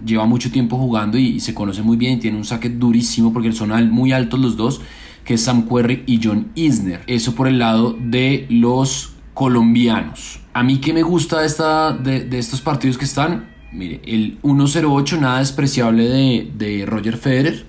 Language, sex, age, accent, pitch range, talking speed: Spanish, male, 20-39, Colombian, 110-130 Hz, 190 wpm